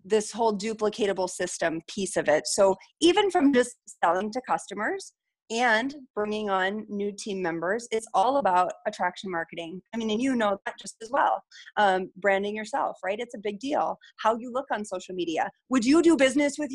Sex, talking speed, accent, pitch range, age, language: female, 190 wpm, American, 190-255 Hz, 30-49, English